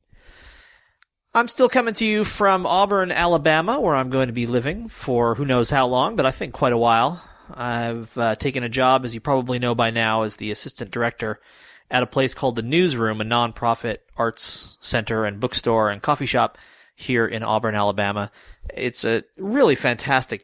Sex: male